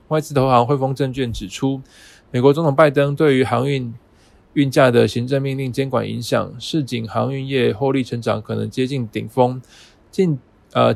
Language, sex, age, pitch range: Chinese, male, 20-39, 115-135 Hz